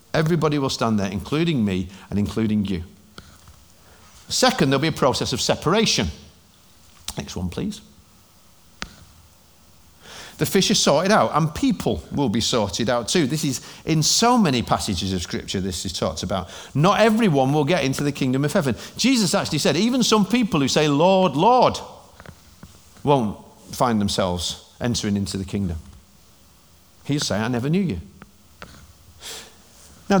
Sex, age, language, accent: male, 50-69, English, British